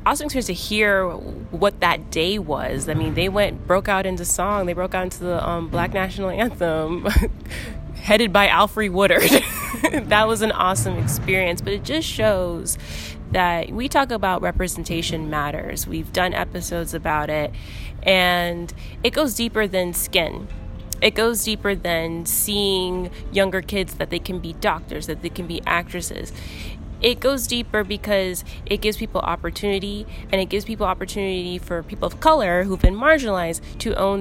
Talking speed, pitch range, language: 165 wpm, 170-205 Hz, English